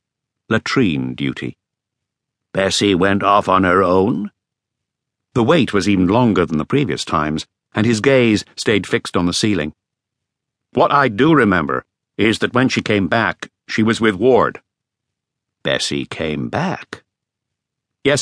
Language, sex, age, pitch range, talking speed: English, male, 60-79, 95-135 Hz, 140 wpm